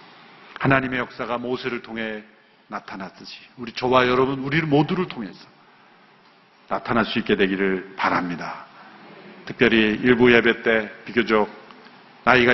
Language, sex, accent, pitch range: Korean, male, native, 125-165 Hz